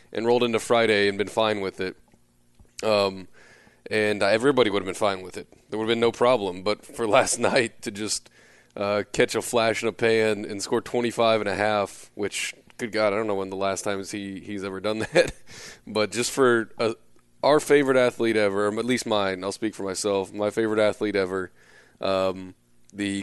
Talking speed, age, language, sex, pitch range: 200 wpm, 20-39, English, male, 95-115 Hz